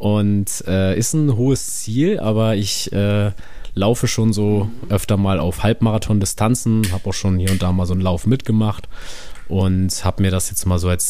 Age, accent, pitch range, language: 20-39, German, 95-110 Hz, German